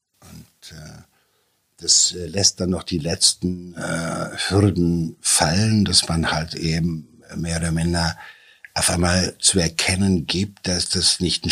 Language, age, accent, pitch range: German, 60-79, German, 80-95 Hz